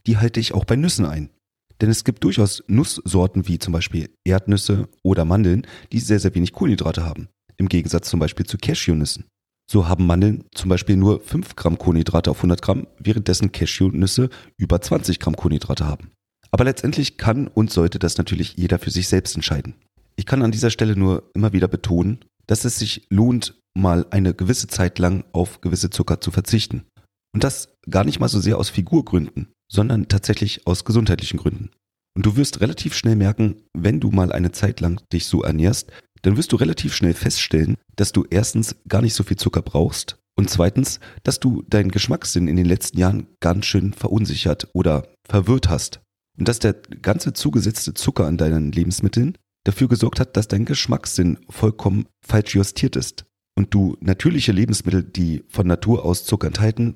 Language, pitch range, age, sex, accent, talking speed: German, 90-110 Hz, 30-49, male, German, 180 wpm